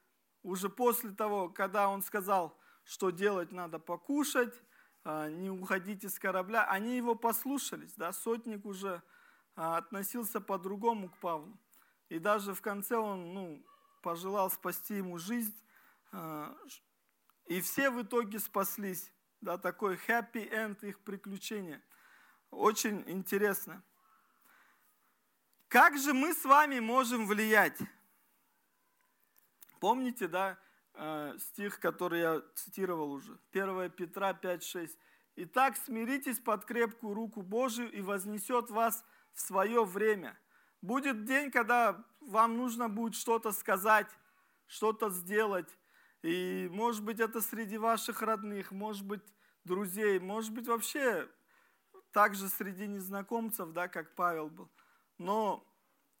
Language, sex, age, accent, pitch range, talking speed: Russian, male, 40-59, native, 190-230 Hz, 115 wpm